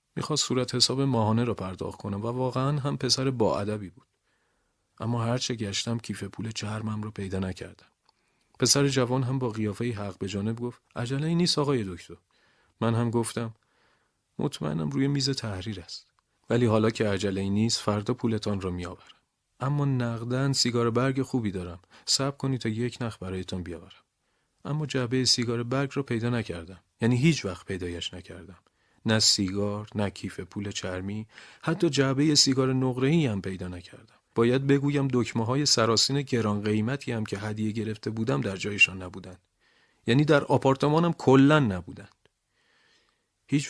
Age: 40-59